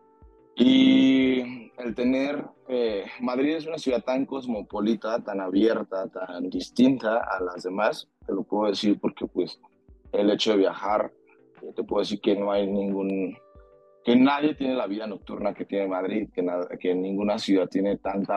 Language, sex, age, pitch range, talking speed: Spanish, male, 20-39, 95-115 Hz, 165 wpm